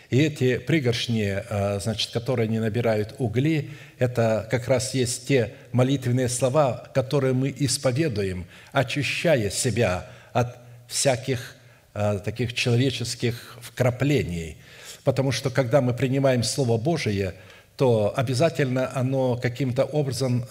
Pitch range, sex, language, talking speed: 120-140 Hz, male, Russian, 110 wpm